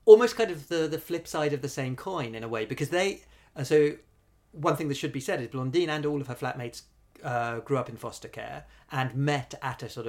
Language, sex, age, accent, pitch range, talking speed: English, male, 40-59, British, 115-155 Hz, 245 wpm